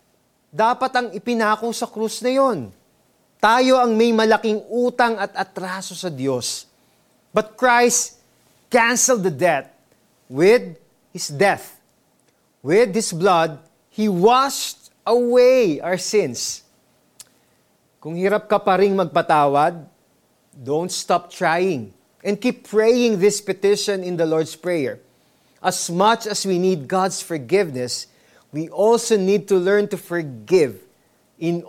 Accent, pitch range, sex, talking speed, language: native, 165-215 Hz, male, 120 wpm, Filipino